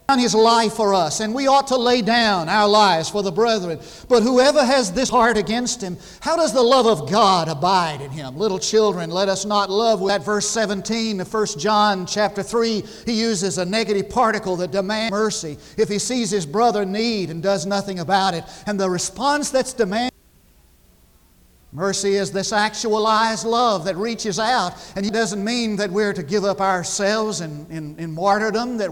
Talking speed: 190 wpm